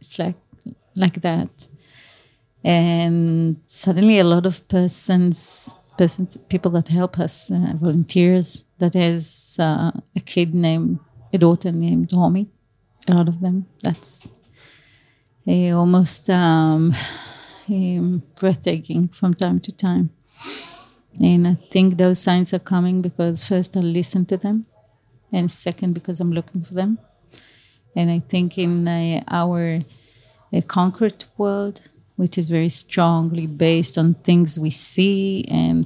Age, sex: 30-49, female